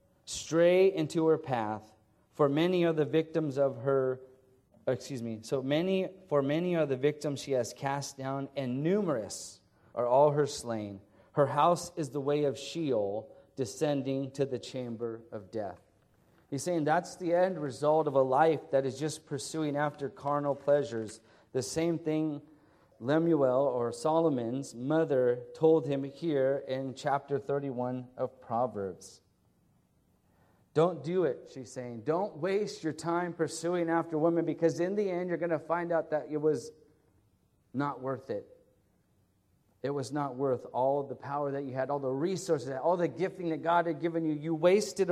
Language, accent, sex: English, American, male